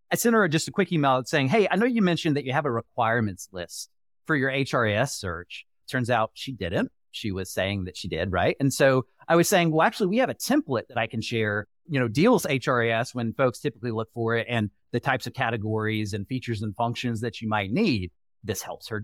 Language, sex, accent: English, male, American